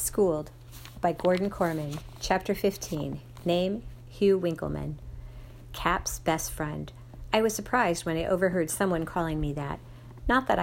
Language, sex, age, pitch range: English, female, 50-69, 145-190 Hz